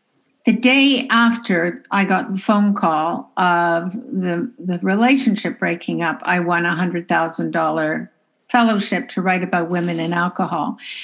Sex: female